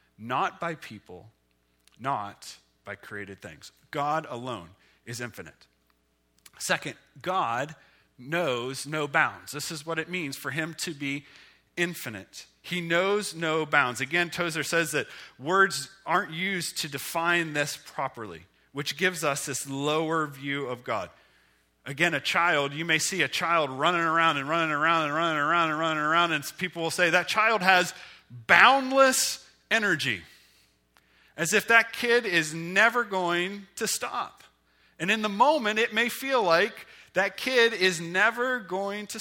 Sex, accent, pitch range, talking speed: male, American, 145-215 Hz, 155 wpm